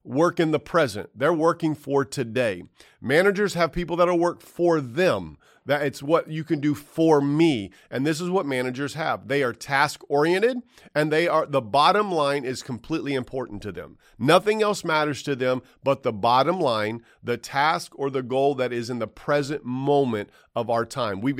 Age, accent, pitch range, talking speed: 40-59, American, 135-185 Hz, 195 wpm